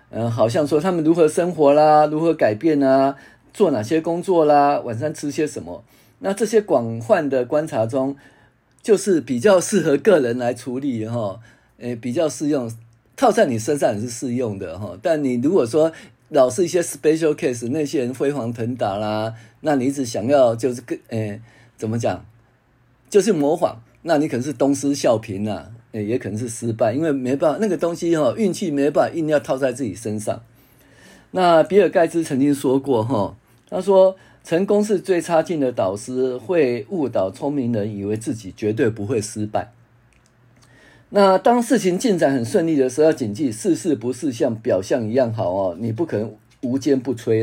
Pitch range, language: 115-160 Hz, Chinese